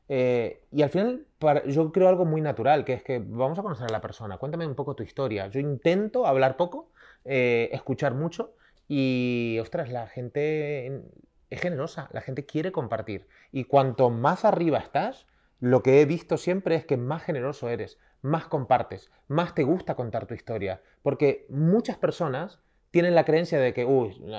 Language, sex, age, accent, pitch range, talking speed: Spanish, male, 30-49, Spanish, 125-165 Hz, 180 wpm